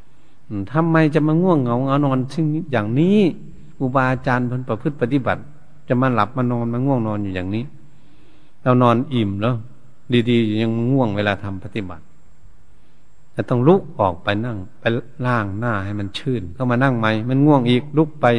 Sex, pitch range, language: male, 110-150 Hz, Thai